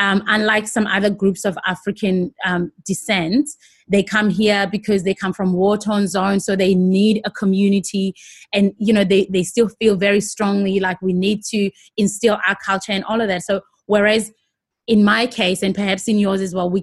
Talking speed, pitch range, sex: 195 wpm, 195-235 Hz, female